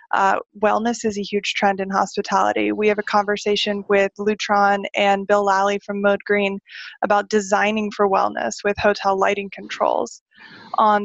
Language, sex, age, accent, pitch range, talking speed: English, female, 20-39, American, 200-215 Hz, 155 wpm